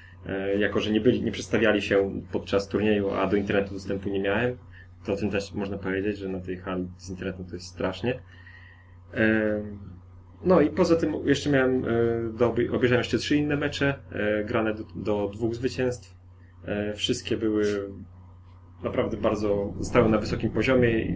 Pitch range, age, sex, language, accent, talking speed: 95-115 Hz, 20-39, male, Polish, native, 150 wpm